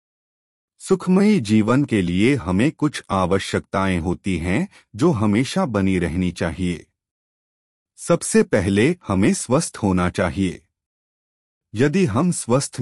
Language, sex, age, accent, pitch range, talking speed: Hindi, male, 30-49, native, 90-145 Hz, 110 wpm